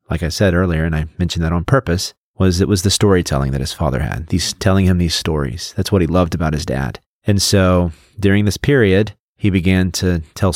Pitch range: 80-95 Hz